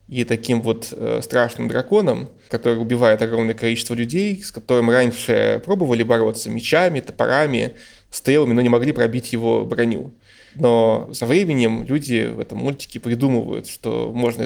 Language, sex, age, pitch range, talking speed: Russian, male, 20-39, 115-130 Hz, 145 wpm